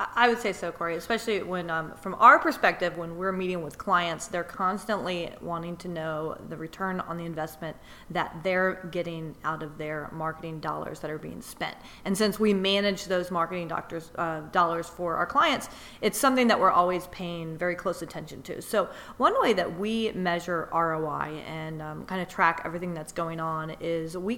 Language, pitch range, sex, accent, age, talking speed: English, 170-200 Hz, female, American, 30-49, 185 wpm